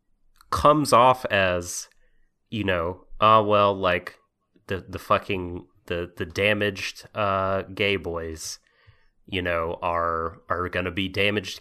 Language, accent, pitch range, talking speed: English, American, 95-125 Hz, 135 wpm